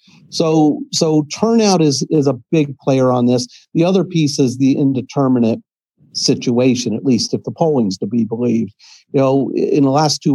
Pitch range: 125-150 Hz